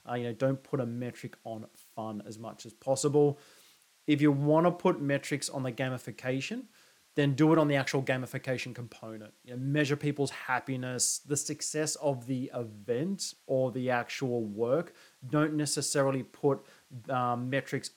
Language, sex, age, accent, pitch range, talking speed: English, male, 30-49, Australian, 125-150 Hz, 165 wpm